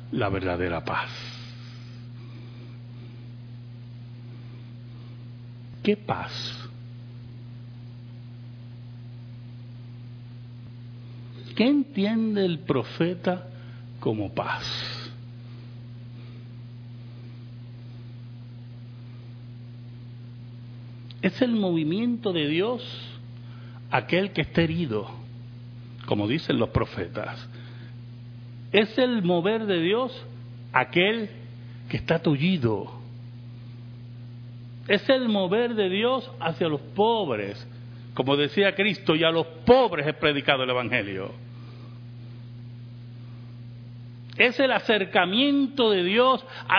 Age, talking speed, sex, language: 60-79, 75 wpm, male, Spanish